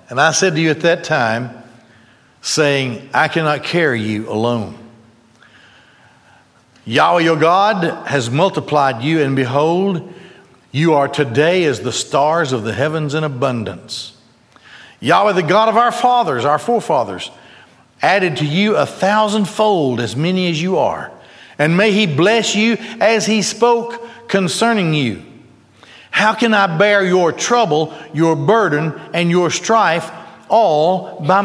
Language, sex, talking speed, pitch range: English, male, 140 wpm, 135-190 Hz